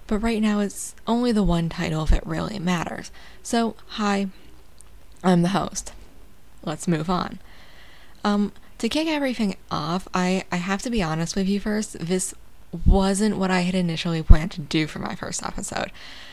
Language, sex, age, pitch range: English, female, 10-29, 170-205 Hz